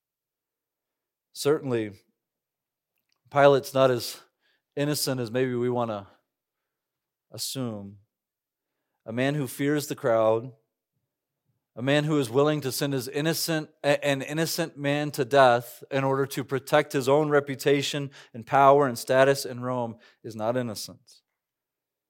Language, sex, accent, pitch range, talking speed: English, male, American, 120-150 Hz, 130 wpm